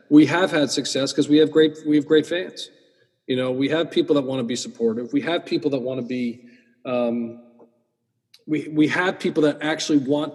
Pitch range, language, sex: 125-155 Hz, English, male